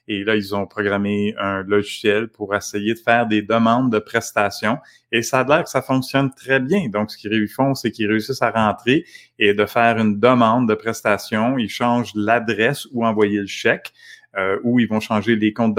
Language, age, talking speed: French, 30-49, 205 wpm